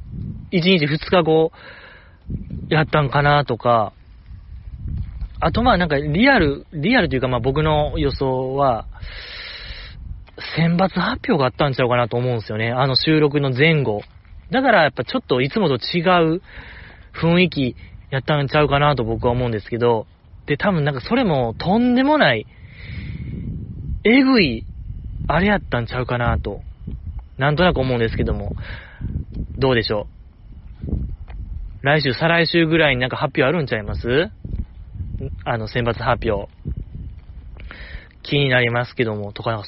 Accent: native